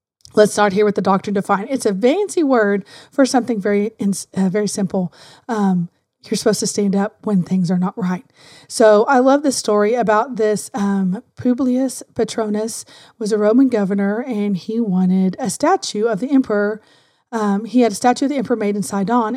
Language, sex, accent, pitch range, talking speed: English, female, American, 205-245 Hz, 190 wpm